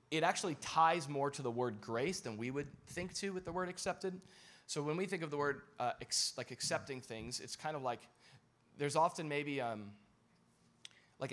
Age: 20-39